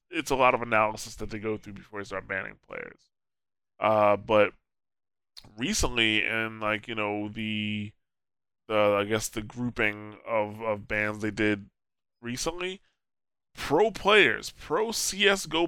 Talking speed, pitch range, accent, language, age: 140 wpm, 105-135 Hz, American, English, 20-39